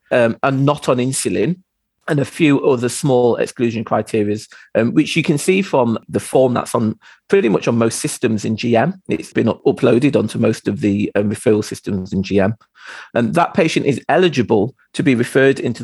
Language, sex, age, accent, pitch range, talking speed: English, male, 40-59, British, 110-155 Hz, 195 wpm